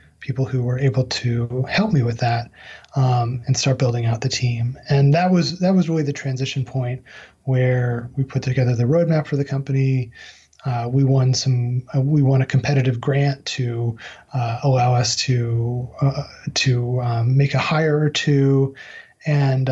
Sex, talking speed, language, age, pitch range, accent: male, 175 wpm, English, 30-49, 125-145 Hz, American